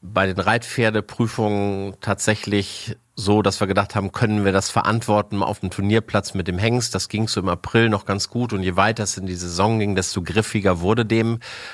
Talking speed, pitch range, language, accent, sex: 200 wpm, 100-115 Hz, German, German, male